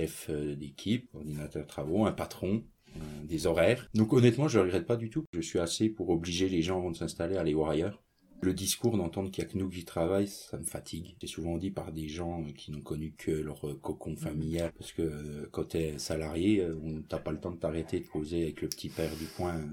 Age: 30-49